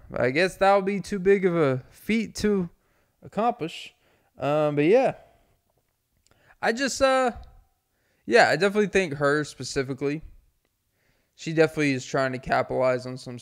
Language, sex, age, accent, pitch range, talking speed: English, male, 20-39, American, 120-140 Hz, 145 wpm